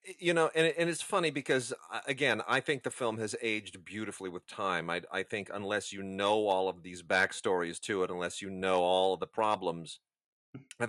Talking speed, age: 205 wpm, 30-49